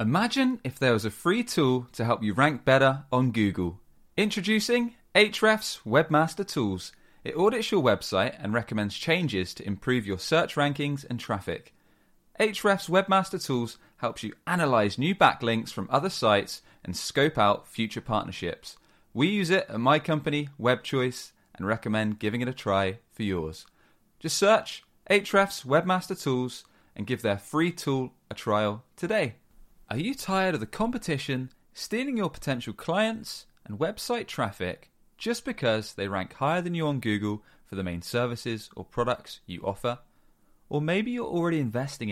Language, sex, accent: English, male, British